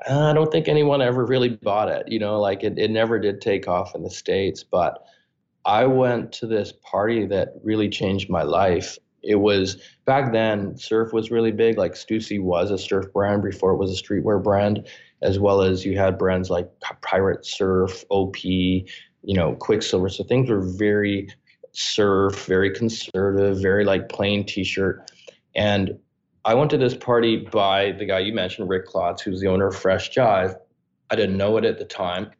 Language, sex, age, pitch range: English, male, 20-39, 95-115 Hz